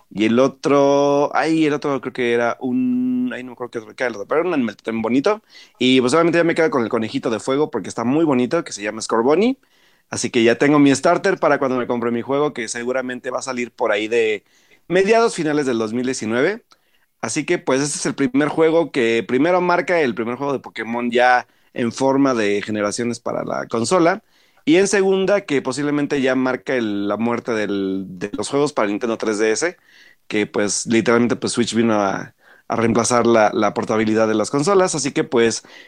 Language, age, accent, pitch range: Spanish, 30-49, Mexican, 115-150 Hz